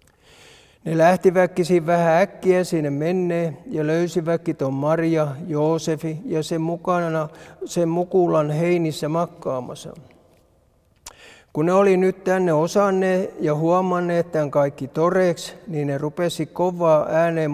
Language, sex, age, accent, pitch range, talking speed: Finnish, male, 60-79, native, 155-180 Hz, 115 wpm